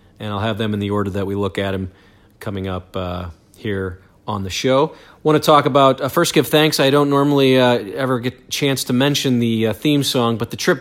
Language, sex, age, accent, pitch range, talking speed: English, male, 40-59, American, 105-140 Hz, 245 wpm